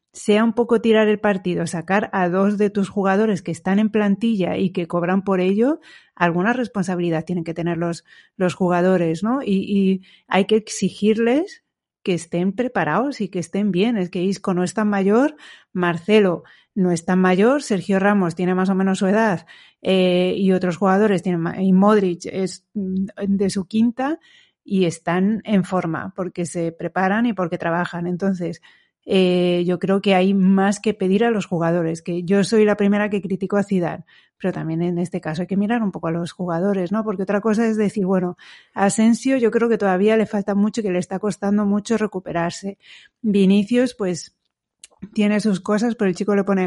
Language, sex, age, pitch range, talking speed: Spanish, female, 40-59, 180-210 Hz, 195 wpm